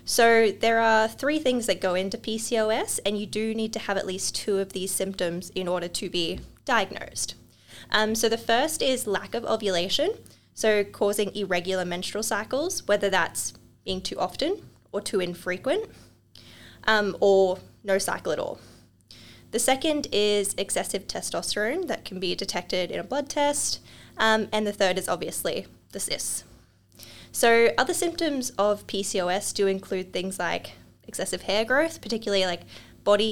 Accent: Australian